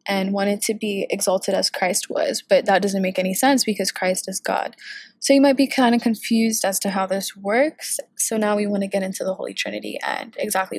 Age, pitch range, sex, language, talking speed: 20-39, 195-220 Hz, female, English, 235 wpm